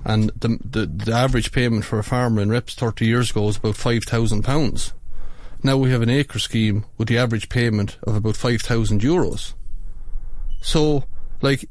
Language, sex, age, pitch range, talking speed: English, male, 30-49, 105-125 Hz, 185 wpm